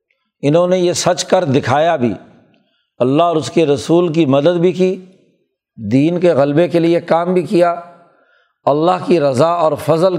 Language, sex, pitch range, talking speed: Urdu, male, 145-180 Hz, 170 wpm